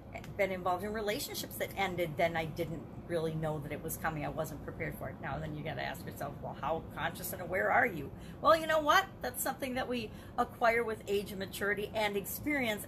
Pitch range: 180-240 Hz